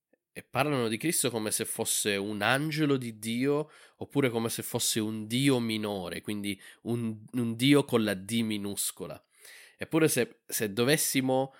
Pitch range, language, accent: 105-130 Hz, Italian, native